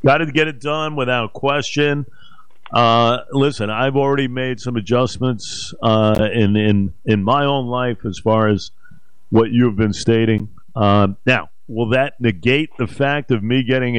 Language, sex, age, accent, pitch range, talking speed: English, male, 50-69, American, 115-145 Hz, 160 wpm